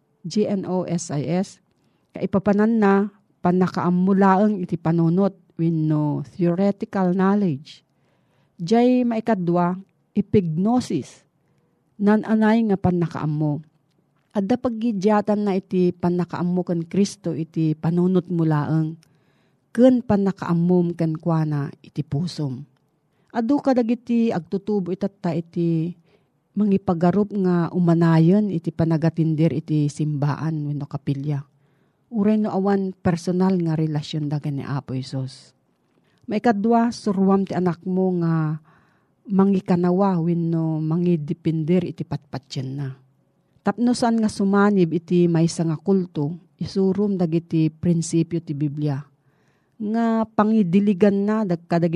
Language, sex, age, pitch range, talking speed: Filipino, female, 40-59, 155-195 Hz, 105 wpm